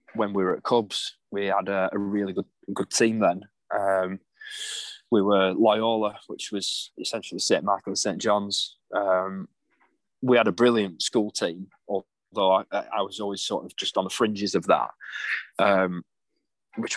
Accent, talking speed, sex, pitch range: British, 170 wpm, male, 95-115 Hz